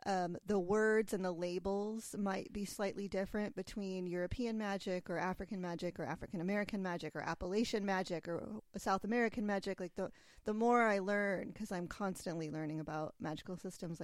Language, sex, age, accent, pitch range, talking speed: English, female, 30-49, American, 175-205 Hz, 165 wpm